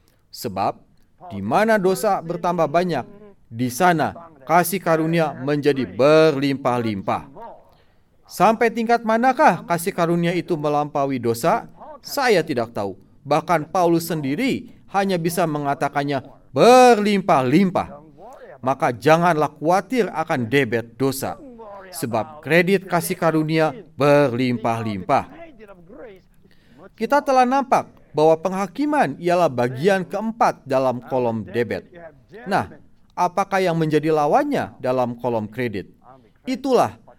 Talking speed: 100 wpm